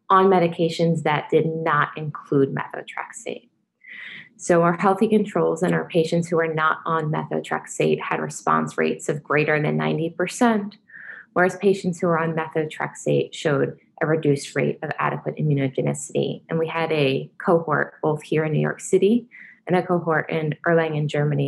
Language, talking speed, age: English, 160 wpm, 20-39